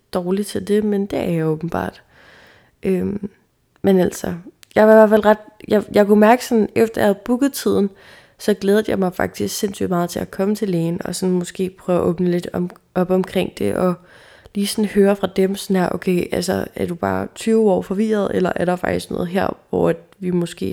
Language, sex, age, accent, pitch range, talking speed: Danish, female, 20-39, native, 180-205 Hz, 220 wpm